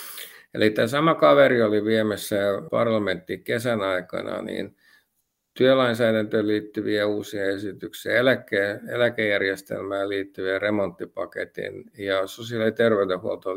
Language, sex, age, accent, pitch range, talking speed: Finnish, male, 50-69, native, 100-120 Hz, 95 wpm